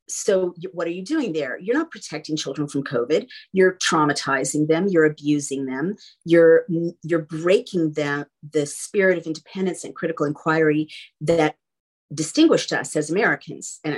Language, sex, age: English, female, 40-59